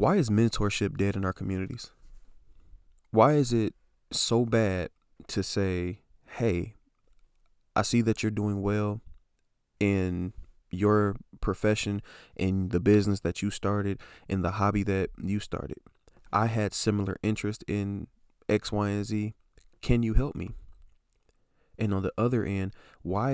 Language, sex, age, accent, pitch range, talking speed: English, male, 20-39, American, 95-110 Hz, 140 wpm